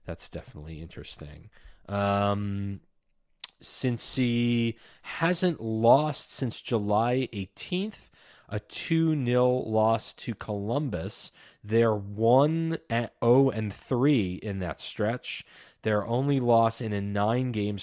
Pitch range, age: 100-125 Hz, 30-49